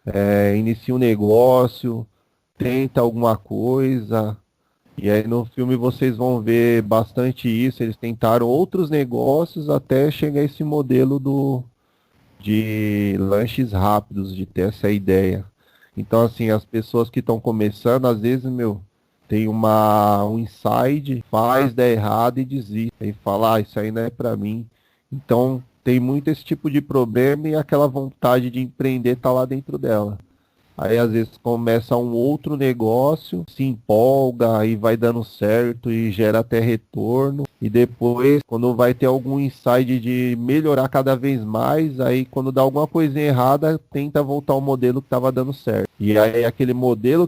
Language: Portuguese